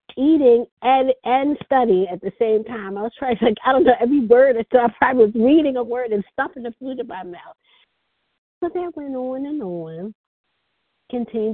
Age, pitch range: 50-69, 170-245 Hz